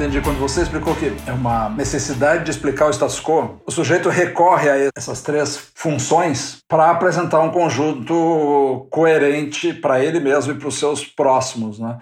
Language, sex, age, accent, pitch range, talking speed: Portuguese, male, 60-79, Brazilian, 135-165 Hz, 170 wpm